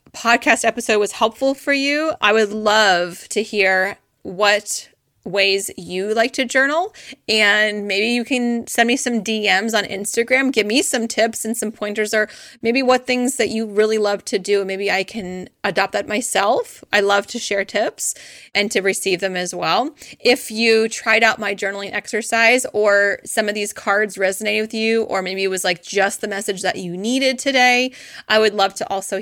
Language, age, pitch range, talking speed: English, 30-49, 190-225 Hz, 190 wpm